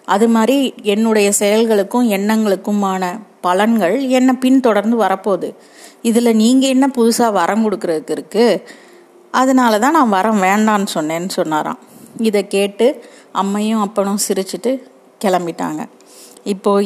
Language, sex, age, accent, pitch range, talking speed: Tamil, female, 30-49, native, 190-225 Hz, 105 wpm